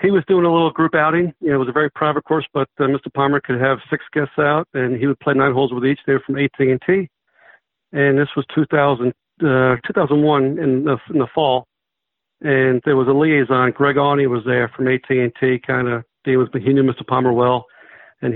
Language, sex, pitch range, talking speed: English, male, 125-145 Hz, 235 wpm